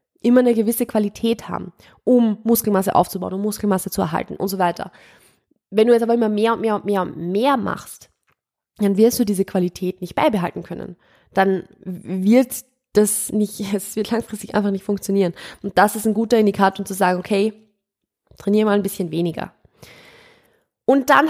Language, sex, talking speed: German, female, 180 wpm